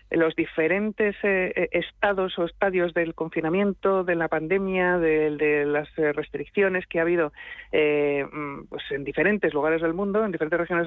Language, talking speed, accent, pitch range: Spanish, 150 wpm, Spanish, 150-185 Hz